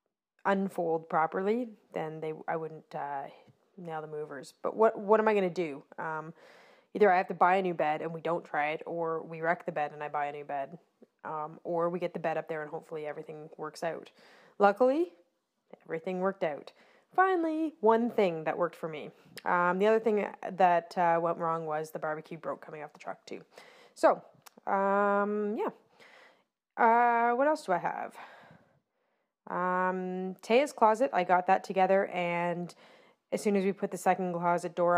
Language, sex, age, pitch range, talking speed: English, female, 20-39, 165-205 Hz, 185 wpm